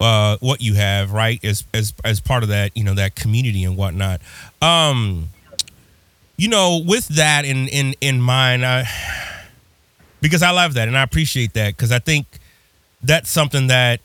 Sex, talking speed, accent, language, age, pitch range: male, 175 wpm, American, English, 30-49, 115-145 Hz